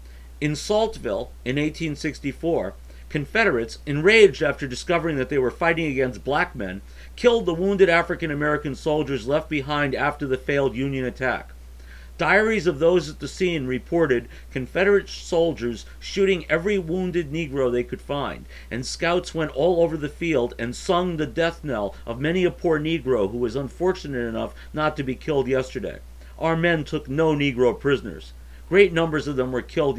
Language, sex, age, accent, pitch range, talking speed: English, male, 50-69, American, 130-180 Hz, 160 wpm